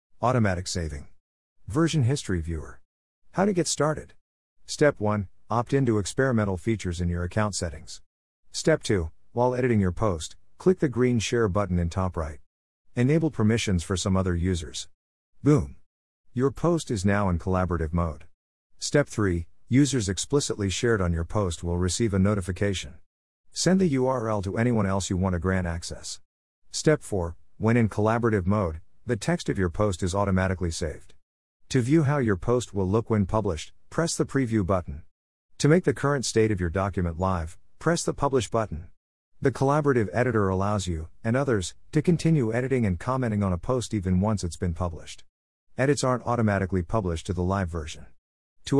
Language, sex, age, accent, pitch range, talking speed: English, male, 50-69, American, 85-120 Hz, 170 wpm